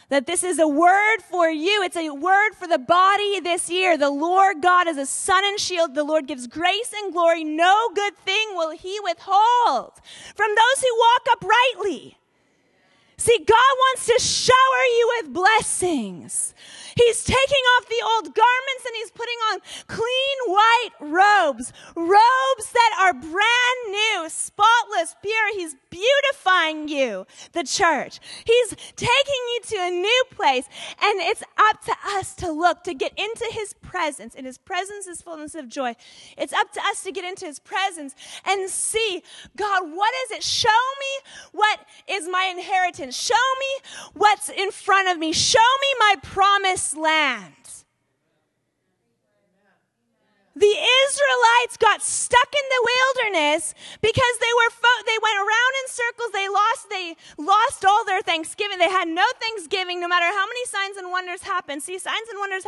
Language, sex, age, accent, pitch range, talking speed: English, female, 30-49, American, 345-455 Hz, 165 wpm